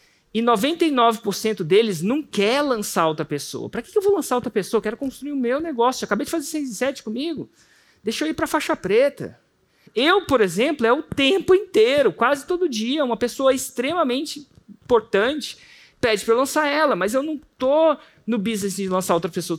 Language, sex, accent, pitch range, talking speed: Portuguese, male, Brazilian, 200-270 Hz, 195 wpm